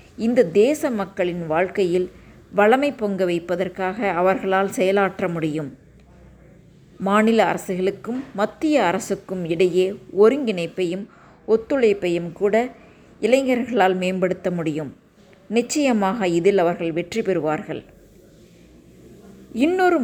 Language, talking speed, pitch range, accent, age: Tamil, 80 wpm, 180-225 Hz, native, 20-39